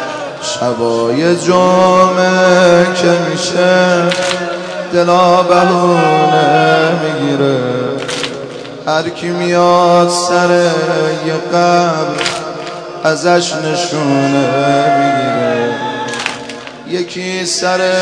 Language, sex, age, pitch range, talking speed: Persian, male, 30-49, 140-175 Hz, 55 wpm